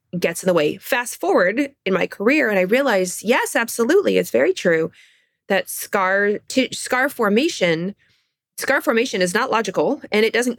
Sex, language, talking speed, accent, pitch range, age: female, English, 170 wpm, American, 180-235 Hz, 20-39